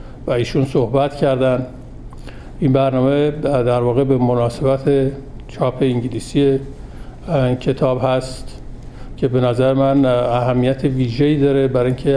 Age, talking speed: 50-69, 110 wpm